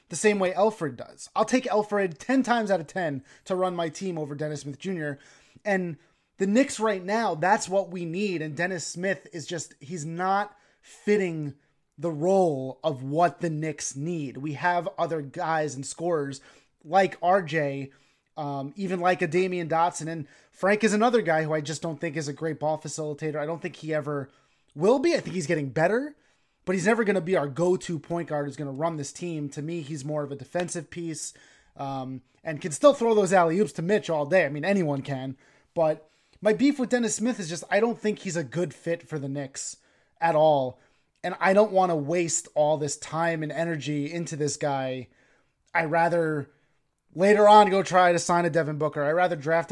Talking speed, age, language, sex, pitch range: 210 wpm, 20-39, English, male, 150-185 Hz